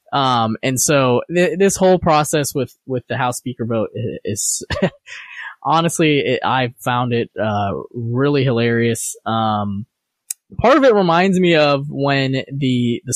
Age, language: 20-39, English